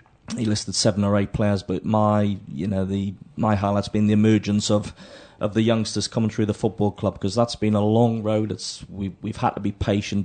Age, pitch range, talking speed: 30-49, 105-115 Hz, 230 wpm